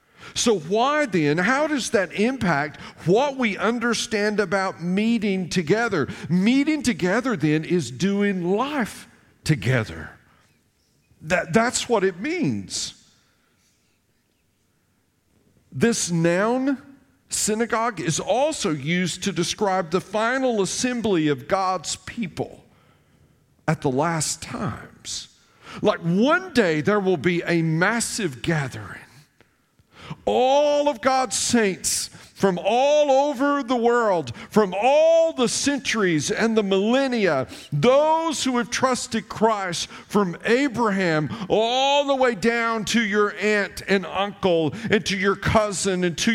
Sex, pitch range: male, 190-250 Hz